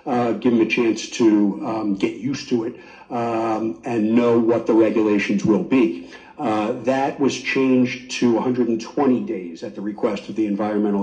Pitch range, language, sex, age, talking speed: 105-125 Hz, English, male, 50-69, 175 wpm